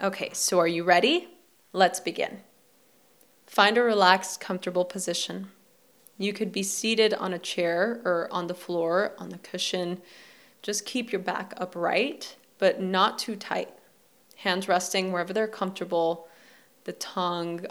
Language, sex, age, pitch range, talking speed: English, female, 20-39, 175-220 Hz, 140 wpm